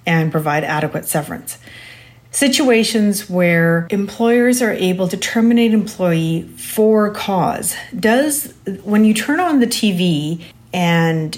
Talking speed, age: 115 wpm, 40-59